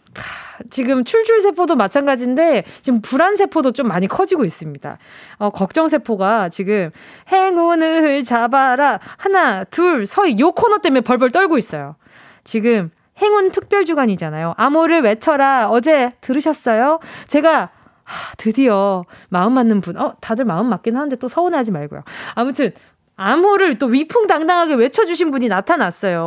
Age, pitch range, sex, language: 20-39, 225-340 Hz, female, Korean